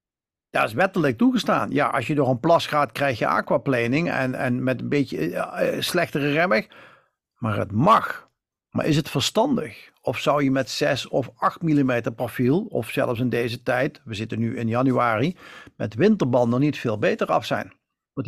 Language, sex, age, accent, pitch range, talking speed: Dutch, male, 50-69, Dutch, 125-170 Hz, 180 wpm